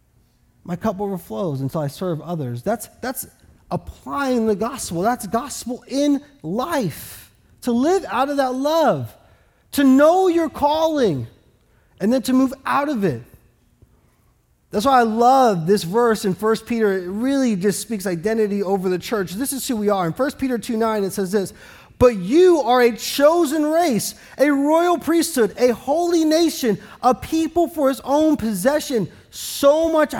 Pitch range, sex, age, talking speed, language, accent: 205-285 Hz, male, 30-49, 165 wpm, English, American